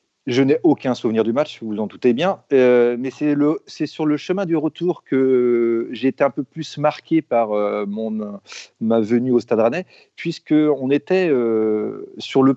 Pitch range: 115-165 Hz